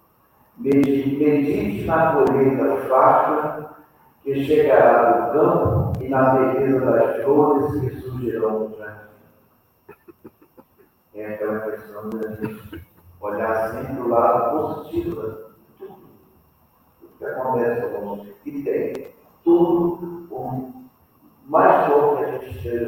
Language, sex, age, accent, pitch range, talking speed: Portuguese, male, 50-69, Brazilian, 105-140 Hz, 125 wpm